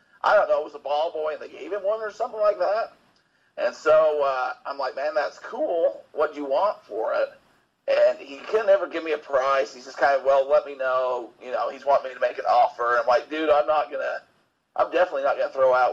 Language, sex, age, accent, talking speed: English, male, 40-59, American, 265 wpm